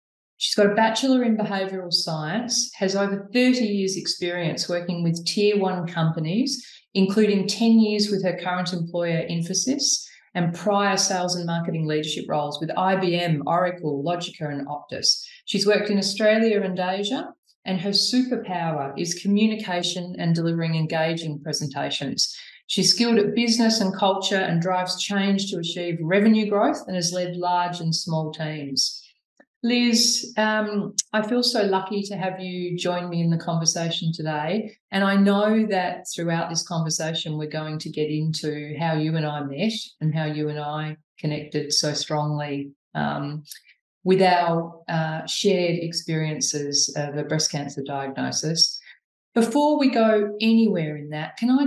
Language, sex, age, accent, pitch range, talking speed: English, female, 30-49, Australian, 160-205 Hz, 155 wpm